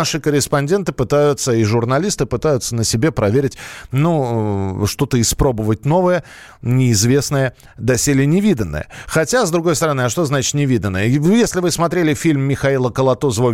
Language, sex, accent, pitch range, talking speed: Russian, male, native, 120-165 Hz, 135 wpm